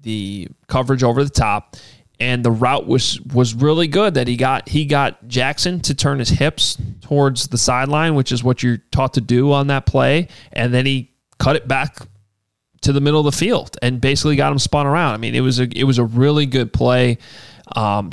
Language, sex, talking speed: English, male, 215 wpm